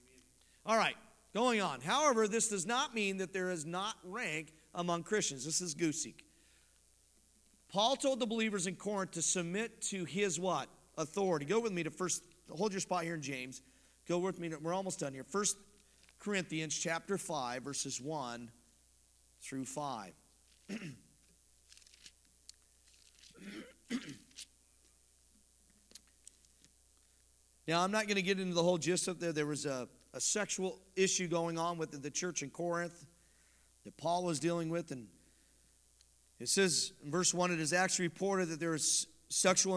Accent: American